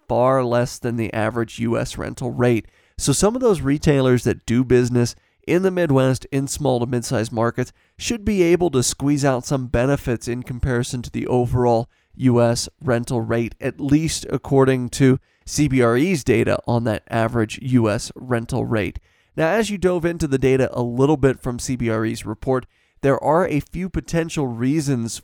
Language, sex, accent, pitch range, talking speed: English, male, American, 120-140 Hz, 170 wpm